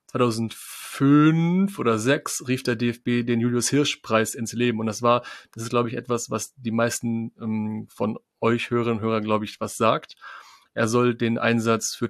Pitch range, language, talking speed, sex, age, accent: 115-130 Hz, German, 180 wpm, male, 30-49, German